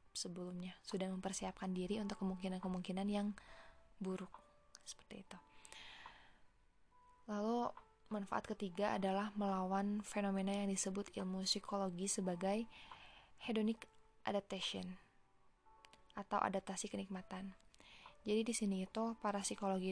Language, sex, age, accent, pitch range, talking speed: Indonesian, female, 20-39, native, 190-215 Hz, 95 wpm